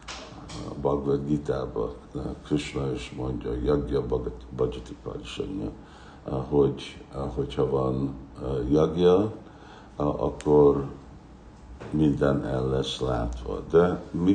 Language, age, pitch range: Hungarian, 60-79, 65-80 Hz